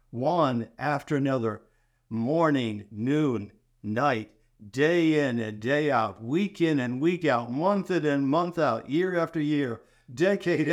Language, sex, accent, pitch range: English, male, American, 120-155 Hz